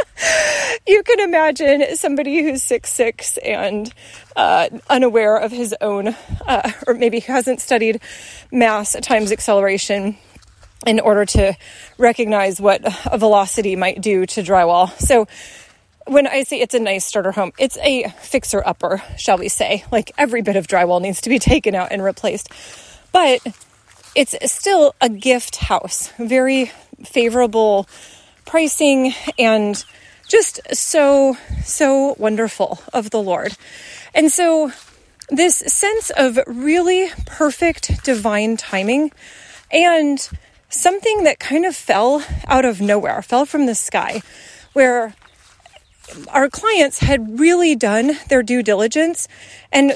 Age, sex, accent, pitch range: 30-49, female, American, 220-295 Hz